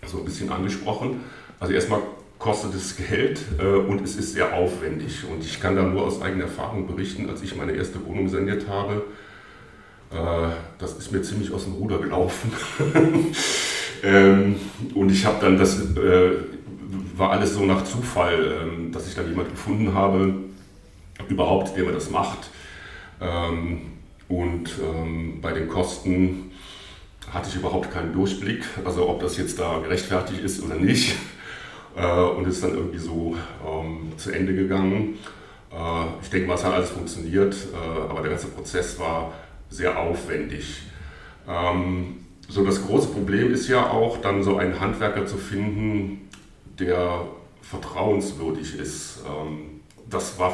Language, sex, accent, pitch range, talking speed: German, male, German, 85-100 Hz, 155 wpm